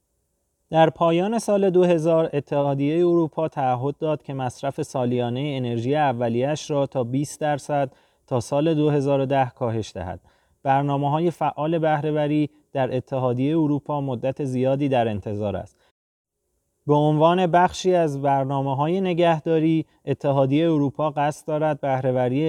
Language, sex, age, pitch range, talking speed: Persian, male, 30-49, 125-155 Hz, 125 wpm